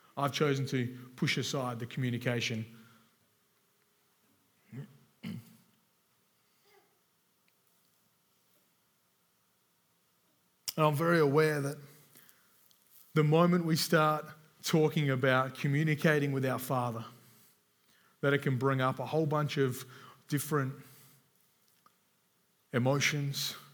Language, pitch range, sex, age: English, 130-150 Hz, male, 30-49